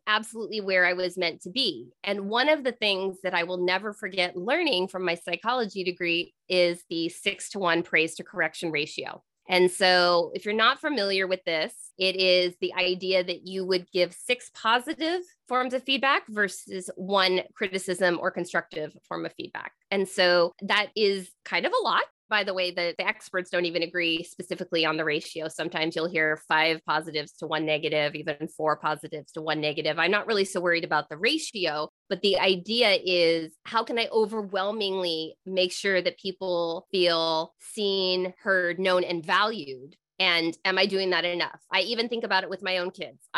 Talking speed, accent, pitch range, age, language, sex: 190 wpm, American, 170-200 Hz, 20-39, English, female